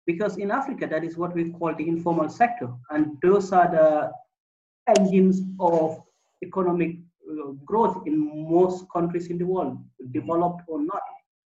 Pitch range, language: 150-180 Hz, English